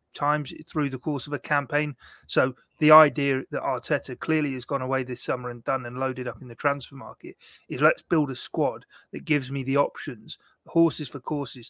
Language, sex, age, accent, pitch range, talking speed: English, male, 30-49, British, 130-150 Hz, 205 wpm